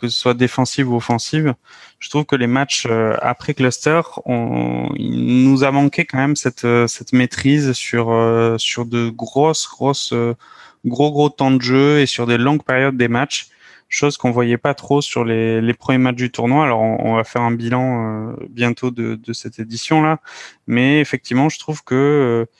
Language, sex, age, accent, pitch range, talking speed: French, male, 20-39, French, 115-135 Hz, 185 wpm